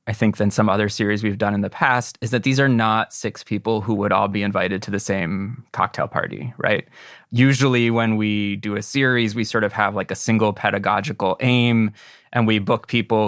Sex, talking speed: male, 215 wpm